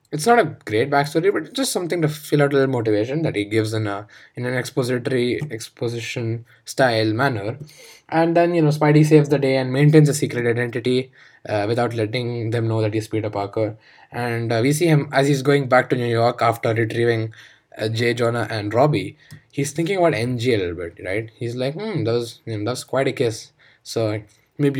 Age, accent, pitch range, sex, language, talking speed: 20-39, Indian, 115-155 Hz, male, English, 210 wpm